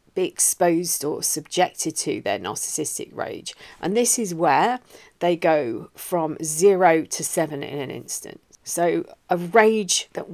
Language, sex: English, female